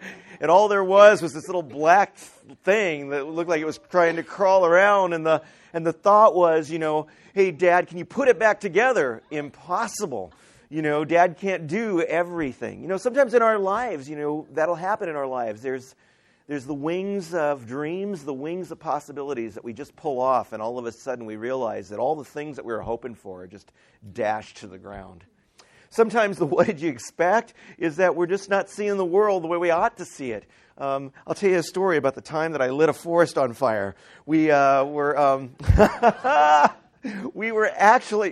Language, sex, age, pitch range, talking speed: English, male, 40-59, 120-175 Hz, 210 wpm